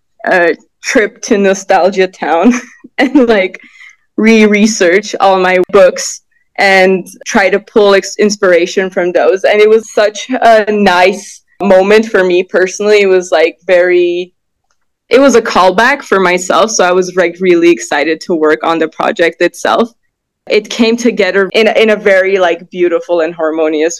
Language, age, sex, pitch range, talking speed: English, 20-39, female, 175-215 Hz, 160 wpm